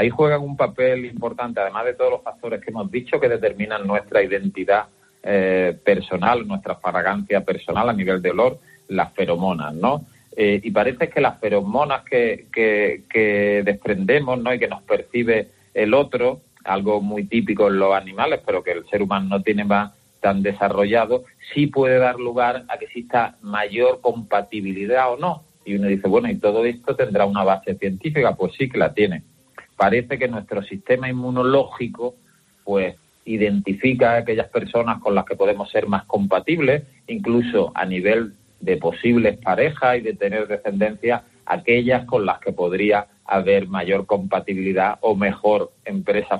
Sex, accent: male, Spanish